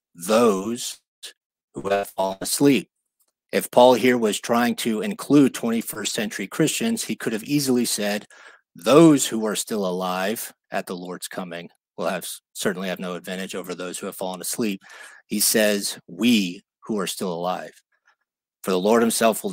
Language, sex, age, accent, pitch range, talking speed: English, male, 50-69, American, 95-125 Hz, 165 wpm